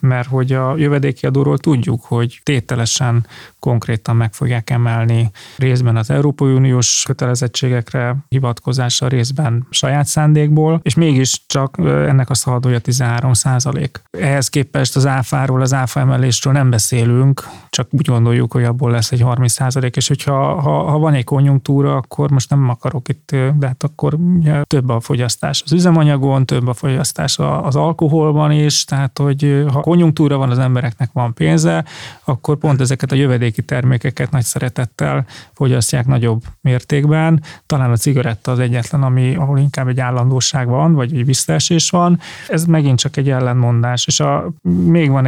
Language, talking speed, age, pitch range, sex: Hungarian, 155 wpm, 30-49, 125-145 Hz, male